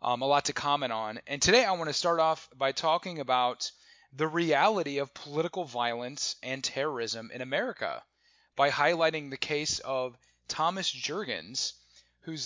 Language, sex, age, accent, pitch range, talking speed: English, male, 30-49, American, 125-150 Hz, 160 wpm